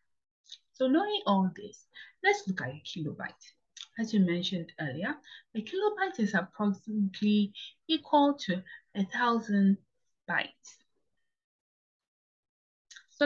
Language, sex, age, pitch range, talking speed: English, female, 20-39, 190-265 Hz, 105 wpm